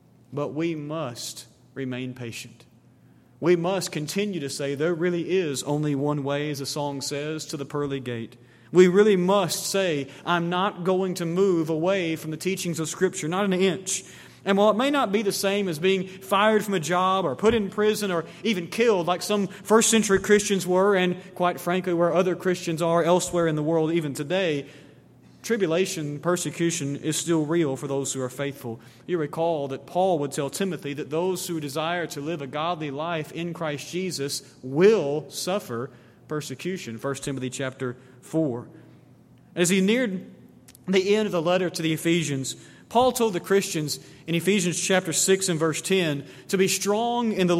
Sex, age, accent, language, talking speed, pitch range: male, 30-49, American, English, 185 wpm, 145-185 Hz